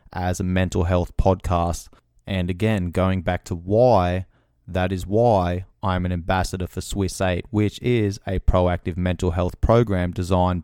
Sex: male